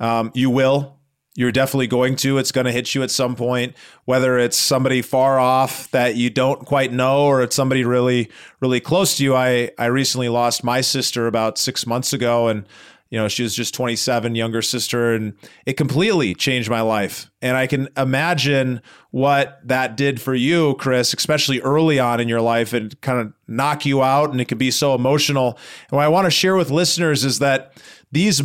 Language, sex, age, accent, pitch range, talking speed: English, male, 30-49, American, 125-145 Hz, 200 wpm